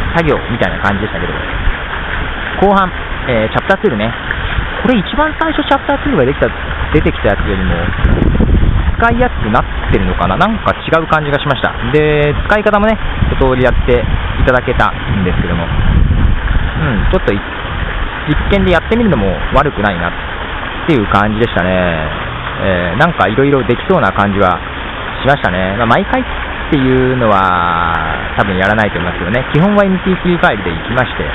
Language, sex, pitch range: Japanese, male, 90-135 Hz